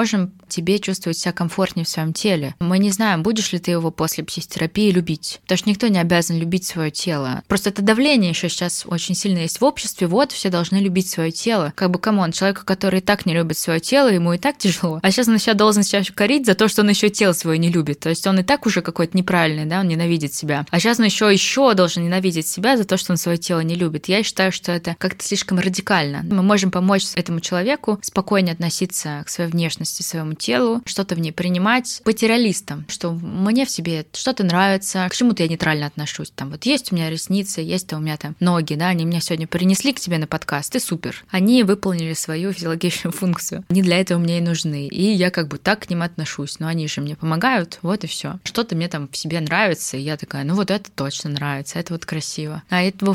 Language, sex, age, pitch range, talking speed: Russian, female, 20-39, 165-195 Hz, 235 wpm